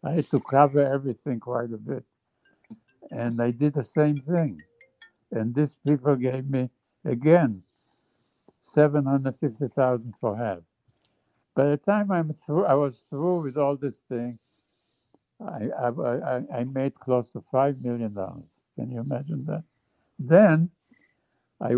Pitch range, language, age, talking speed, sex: 120-150 Hz, English, 60-79, 140 wpm, male